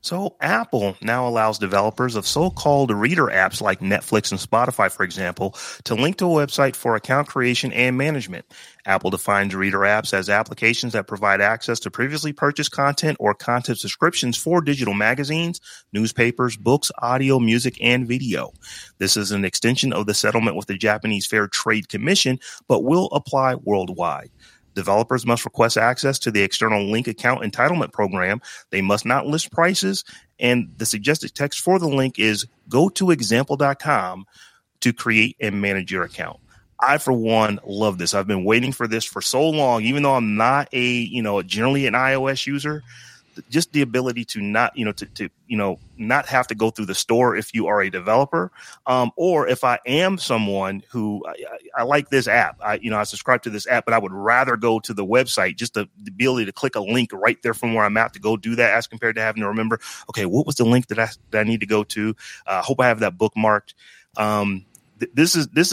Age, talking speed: 30-49, 200 wpm